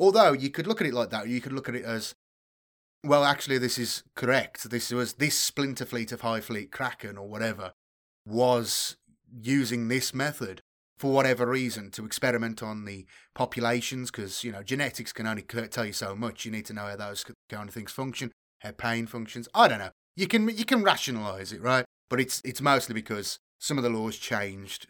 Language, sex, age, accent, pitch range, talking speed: English, male, 30-49, British, 110-130 Hz, 205 wpm